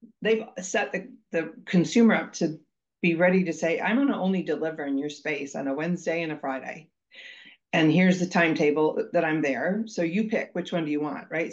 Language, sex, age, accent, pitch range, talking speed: English, female, 40-59, American, 155-220 Hz, 215 wpm